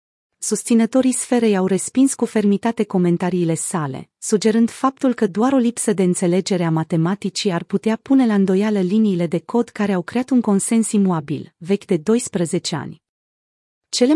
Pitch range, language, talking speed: 175-225 Hz, Romanian, 155 wpm